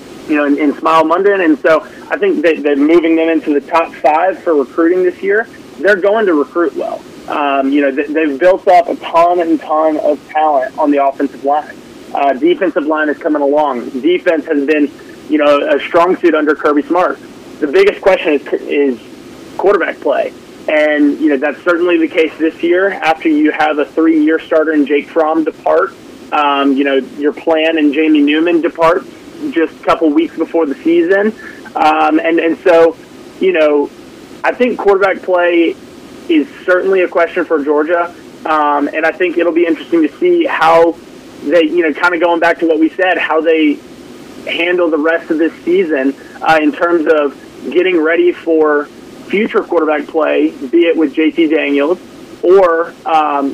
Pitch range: 150-185 Hz